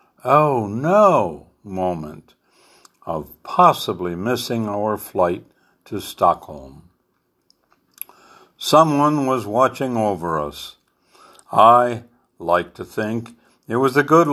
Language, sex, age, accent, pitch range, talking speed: English, male, 60-79, American, 100-135 Hz, 95 wpm